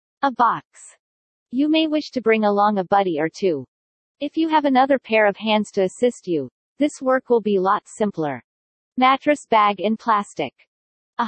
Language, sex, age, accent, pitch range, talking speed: English, female, 40-59, American, 195-245 Hz, 175 wpm